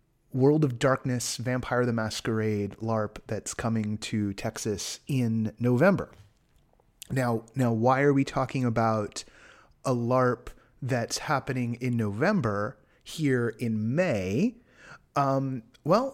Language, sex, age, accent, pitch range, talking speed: English, male, 30-49, American, 110-140 Hz, 115 wpm